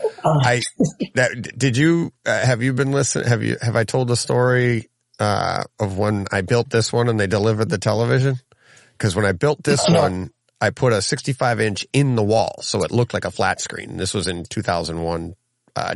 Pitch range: 90-120 Hz